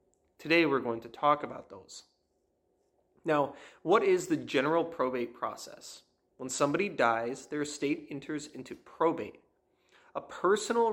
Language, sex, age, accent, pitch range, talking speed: English, male, 30-49, American, 135-175 Hz, 130 wpm